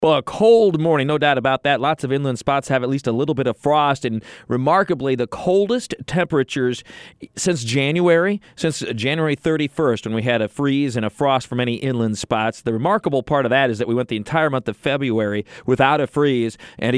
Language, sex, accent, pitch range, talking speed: English, male, American, 120-155 Hz, 210 wpm